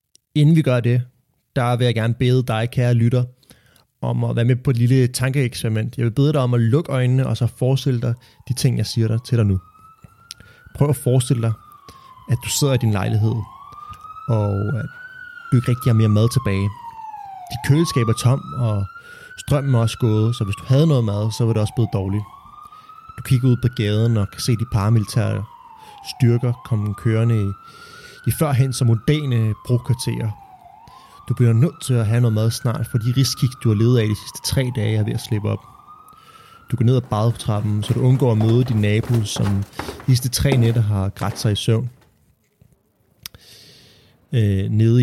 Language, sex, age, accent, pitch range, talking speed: Danish, male, 30-49, native, 110-130 Hz, 200 wpm